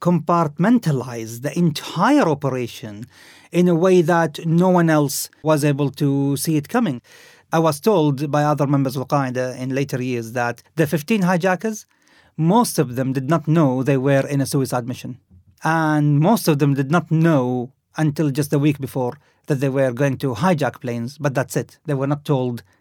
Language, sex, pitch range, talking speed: English, male, 130-170 Hz, 185 wpm